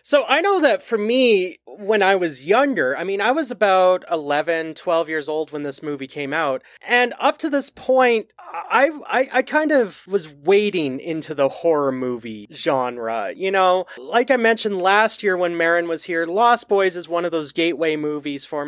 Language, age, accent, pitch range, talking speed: English, 30-49, American, 150-225 Hz, 195 wpm